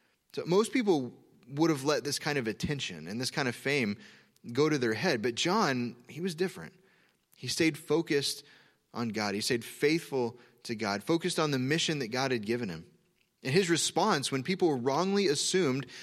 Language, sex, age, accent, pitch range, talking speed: English, male, 20-39, American, 130-180 Hz, 185 wpm